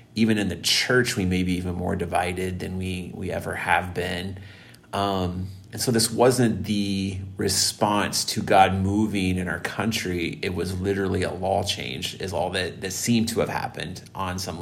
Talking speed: 185 wpm